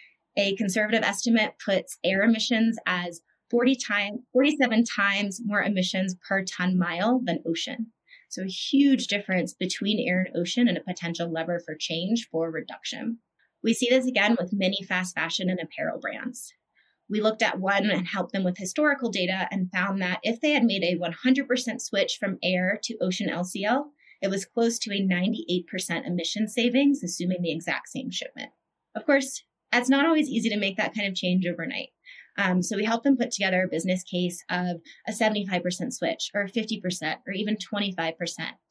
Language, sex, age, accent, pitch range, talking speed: English, female, 30-49, American, 180-230 Hz, 175 wpm